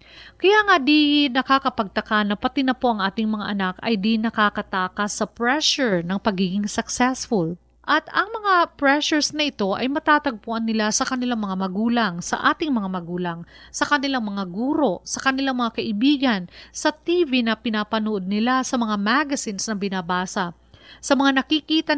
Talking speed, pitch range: 160 wpm, 195-260 Hz